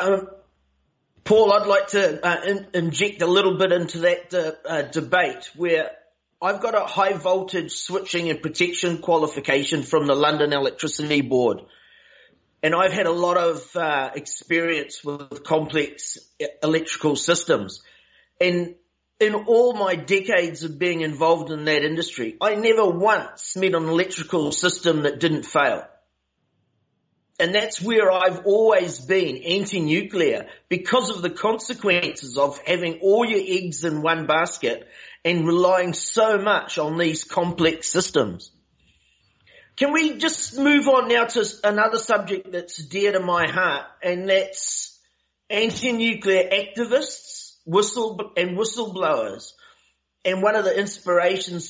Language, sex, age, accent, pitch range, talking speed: English, male, 40-59, Australian, 160-205 Hz, 135 wpm